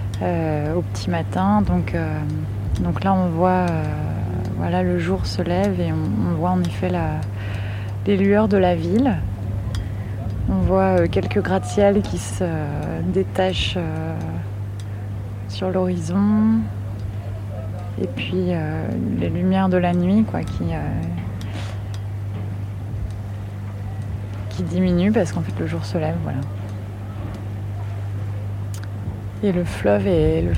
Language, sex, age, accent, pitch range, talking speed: French, female, 20-39, French, 90-100 Hz, 130 wpm